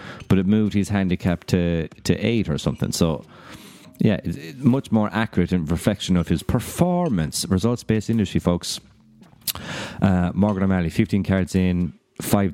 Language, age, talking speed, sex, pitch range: English, 30-49, 150 wpm, male, 85-110 Hz